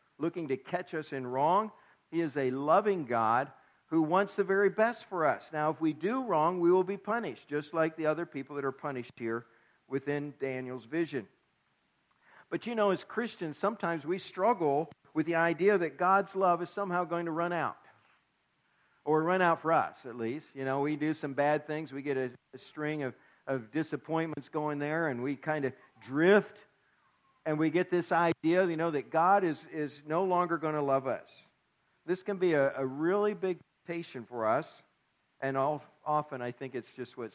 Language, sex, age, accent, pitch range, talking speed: English, male, 50-69, American, 135-170 Hz, 195 wpm